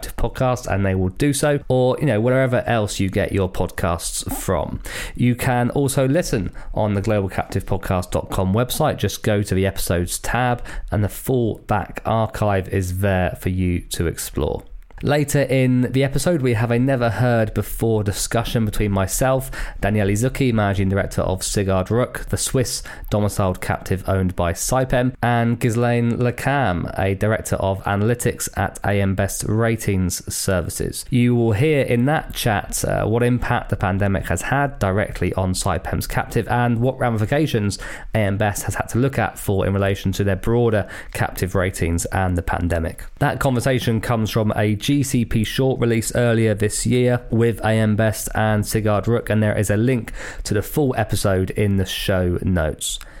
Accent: British